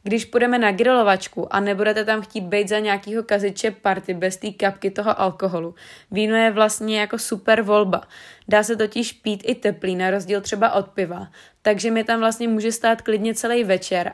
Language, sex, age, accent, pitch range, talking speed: Czech, female, 20-39, native, 195-220 Hz, 185 wpm